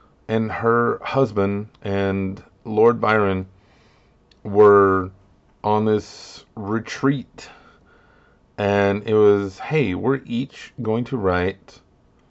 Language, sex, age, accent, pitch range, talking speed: English, male, 30-49, American, 95-115 Hz, 95 wpm